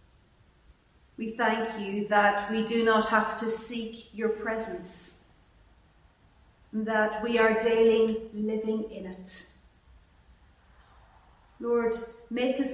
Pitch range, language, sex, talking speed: 175-225 Hz, English, female, 110 wpm